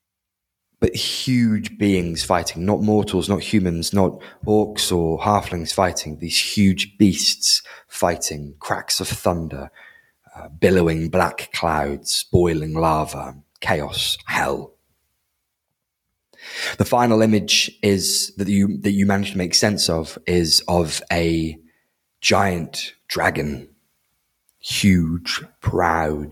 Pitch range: 80-100 Hz